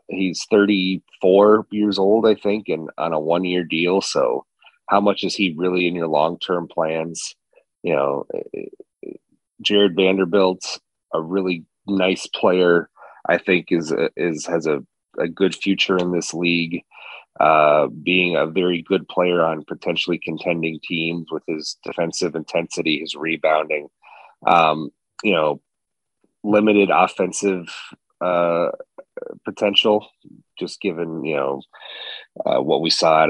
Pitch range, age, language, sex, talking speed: 85-105 Hz, 30-49, English, male, 130 wpm